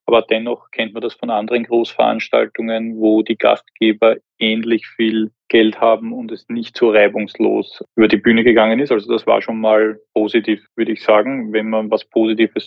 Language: German